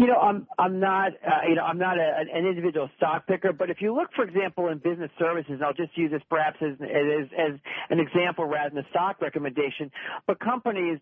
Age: 40-59